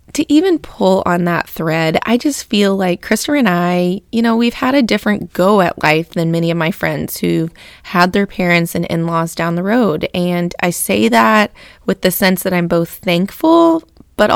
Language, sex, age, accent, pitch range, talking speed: English, female, 20-39, American, 170-210 Hz, 205 wpm